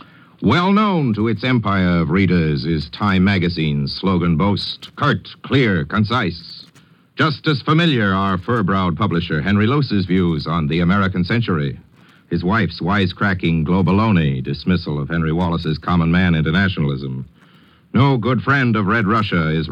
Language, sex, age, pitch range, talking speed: English, male, 60-79, 85-115 Hz, 140 wpm